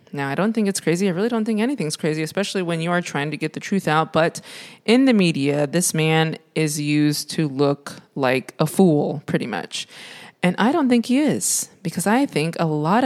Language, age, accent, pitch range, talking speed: English, 20-39, American, 155-195 Hz, 220 wpm